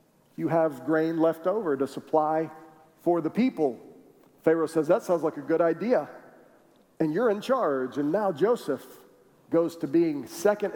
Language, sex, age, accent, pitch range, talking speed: English, male, 40-59, American, 160-210 Hz, 160 wpm